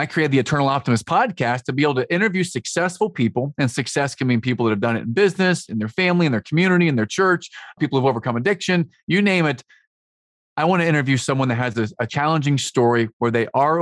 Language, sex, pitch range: English, male, 120-160 Hz